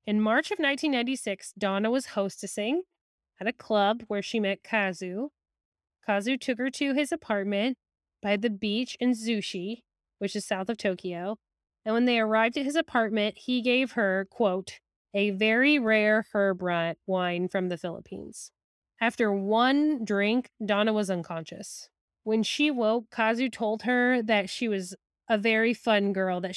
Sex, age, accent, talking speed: female, 10-29, American, 155 wpm